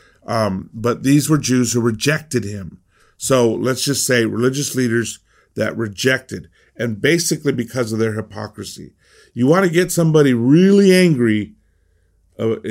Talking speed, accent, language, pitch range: 140 wpm, American, English, 110-155 Hz